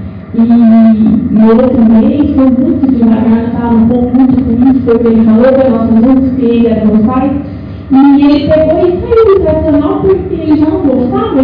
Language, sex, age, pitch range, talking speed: Portuguese, female, 40-59, 225-275 Hz, 165 wpm